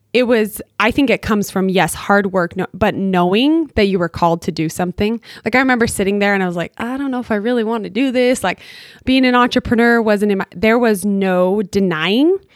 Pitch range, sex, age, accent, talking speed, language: 180-220 Hz, female, 20-39, American, 240 wpm, English